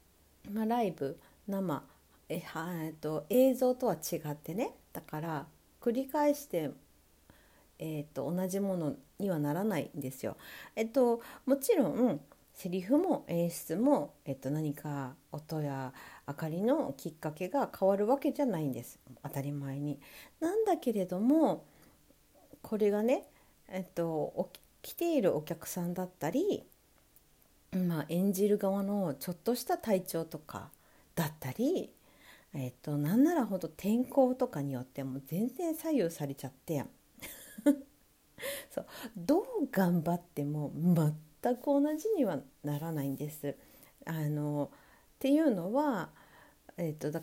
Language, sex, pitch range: Japanese, female, 145-245 Hz